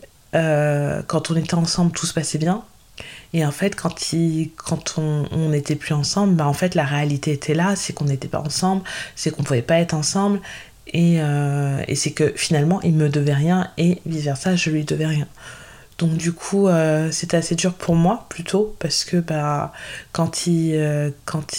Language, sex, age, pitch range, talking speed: French, female, 20-39, 150-175 Hz, 200 wpm